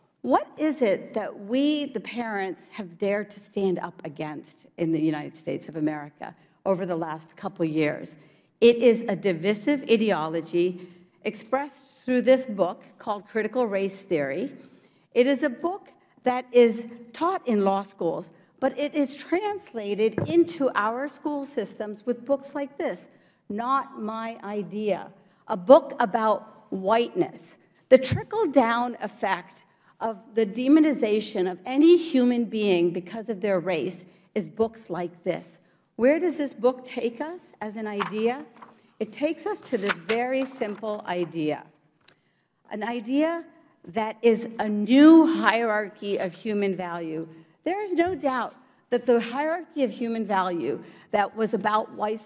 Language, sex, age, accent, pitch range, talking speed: English, female, 50-69, American, 190-260 Hz, 145 wpm